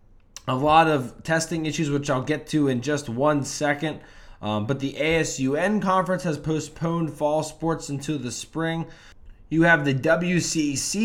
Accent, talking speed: American, 155 wpm